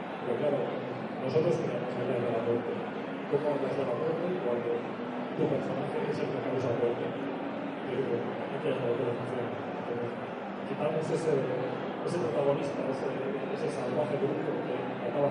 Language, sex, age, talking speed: Spanish, male, 30-49, 140 wpm